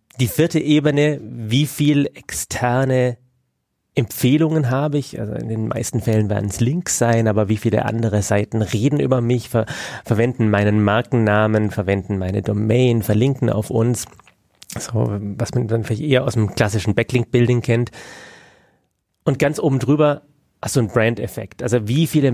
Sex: male